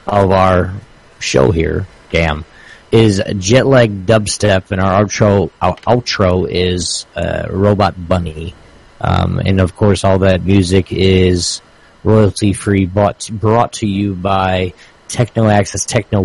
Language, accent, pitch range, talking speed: English, American, 95-120 Hz, 130 wpm